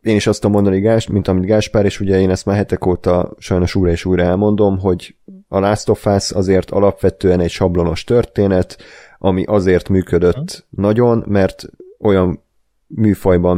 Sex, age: male, 30-49